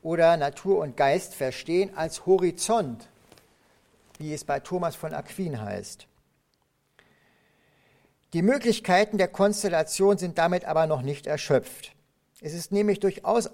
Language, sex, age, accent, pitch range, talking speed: German, male, 50-69, German, 155-205 Hz, 125 wpm